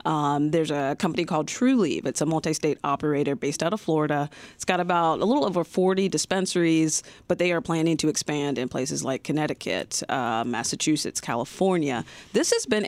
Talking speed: 175 wpm